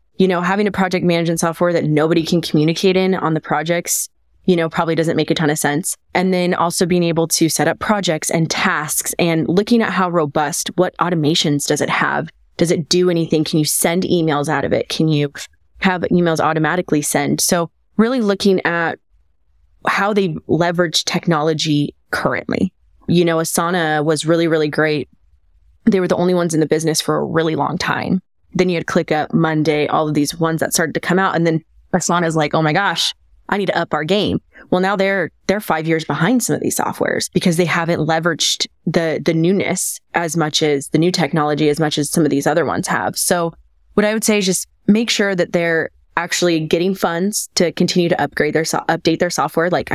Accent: American